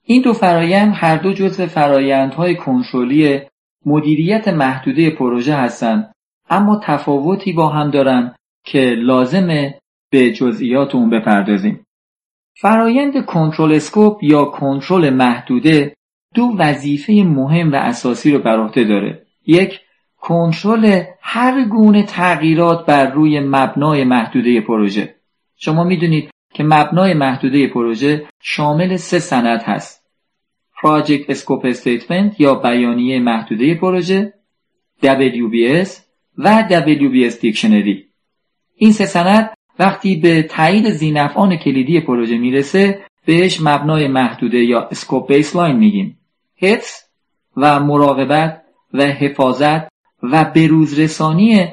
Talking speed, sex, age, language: 105 wpm, male, 40-59, Persian